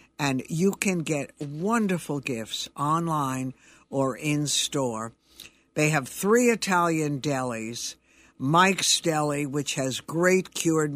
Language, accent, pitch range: English, American, 140-160 Hz